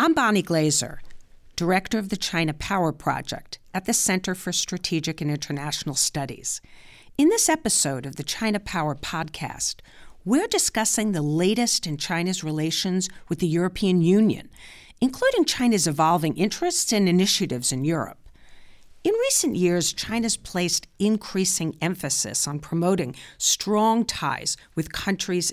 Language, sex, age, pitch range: English, female, 50-69, 155-210 Hz